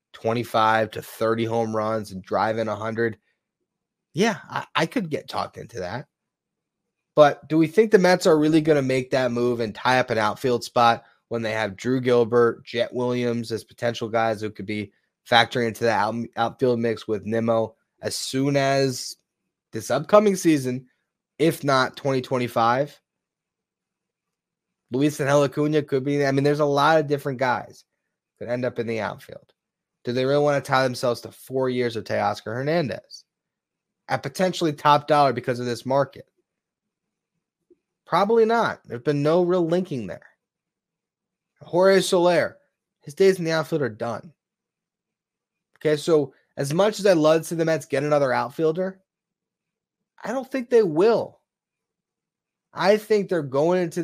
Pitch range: 120-165 Hz